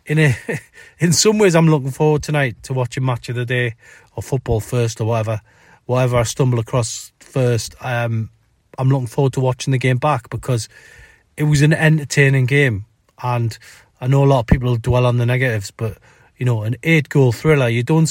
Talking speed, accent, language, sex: 200 wpm, British, English, male